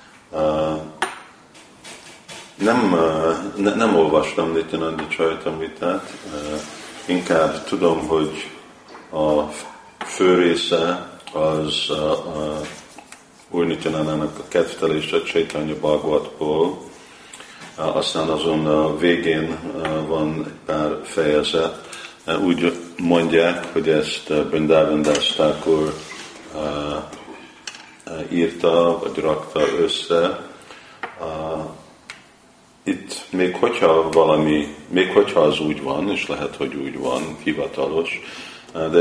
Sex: male